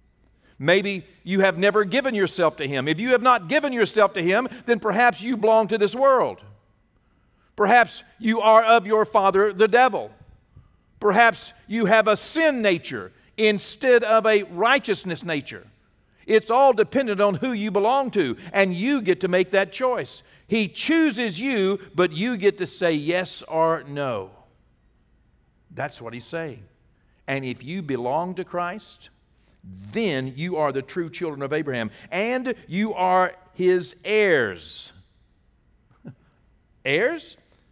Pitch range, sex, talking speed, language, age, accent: 165-230 Hz, male, 145 wpm, English, 50-69, American